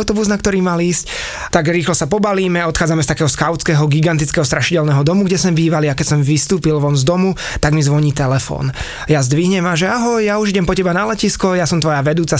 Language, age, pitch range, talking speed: Slovak, 20-39, 150-180 Hz, 225 wpm